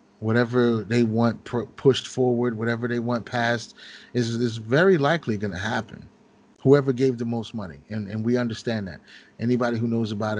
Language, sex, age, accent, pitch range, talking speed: English, male, 30-49, American, 110-130 Hz, 175 wpm